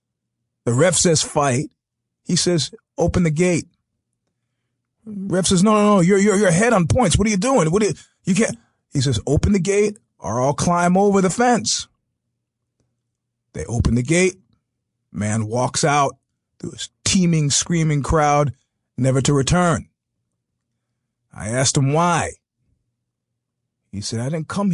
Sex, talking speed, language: male, 155 wpm, English